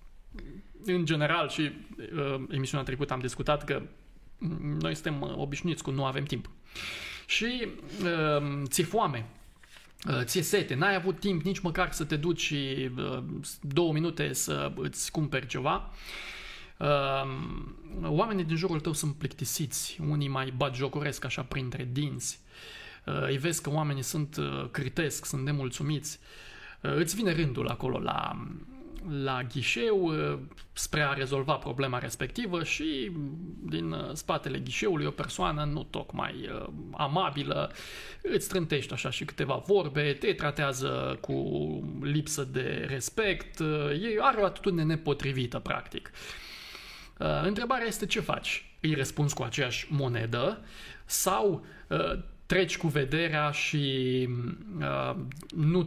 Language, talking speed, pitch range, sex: Romanian, 125 wpm, 135-170 Hz, male